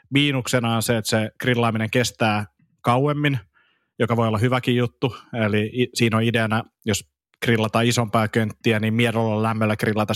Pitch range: 110-120 Hz